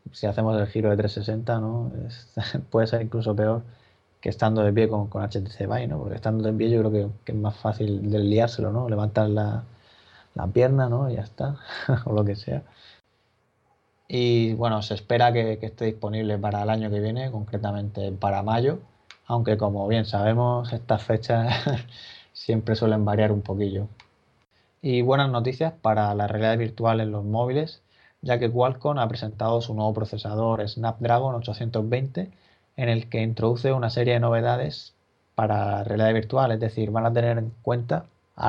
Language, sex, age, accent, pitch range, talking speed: Spanish, male, 20-39, Spanish, 105-120 Hz, 170 wpm